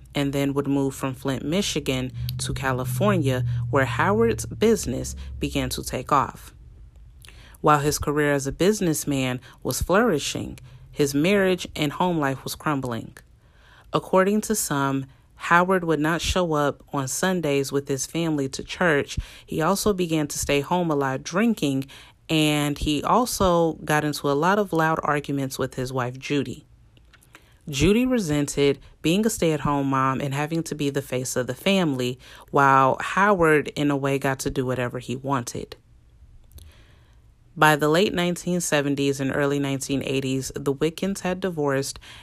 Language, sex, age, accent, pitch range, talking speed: English, female, 30-49, American, 130-160 Hz, 150 wpm